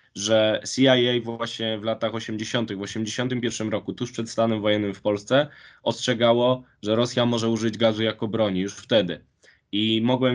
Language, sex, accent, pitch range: Polish, male, native, 115-135 Hz